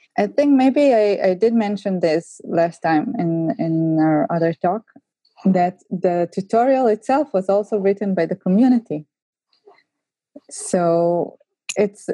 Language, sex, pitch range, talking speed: English, female, 175-205 Hz, 135 wpm